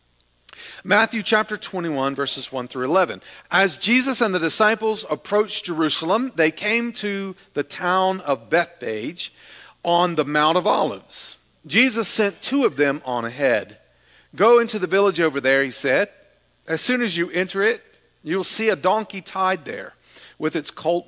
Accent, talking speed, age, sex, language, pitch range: American, 160 wpm, 40-59, male, English, 140-210 Hz